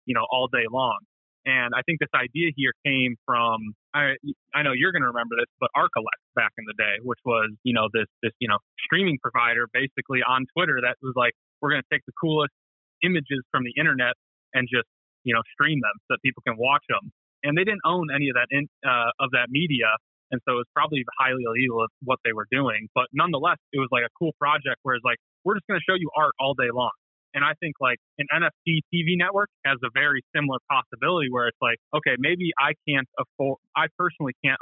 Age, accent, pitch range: 20-39, American, 120-150 Hz